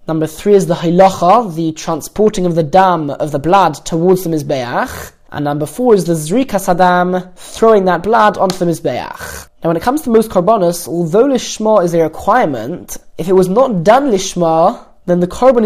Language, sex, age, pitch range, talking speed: English, male, 20-39, 170-210 Hz, 190 wpm